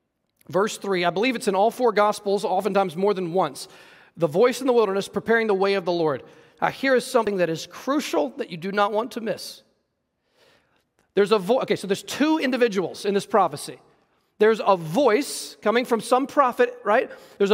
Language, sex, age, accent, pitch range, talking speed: English, male, 40-59, American, 210-275 Hz, 200 wpm